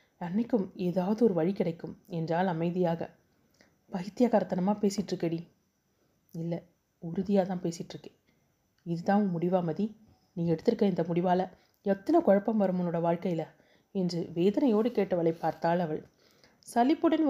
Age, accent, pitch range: 30-49, native, 175-215 Hz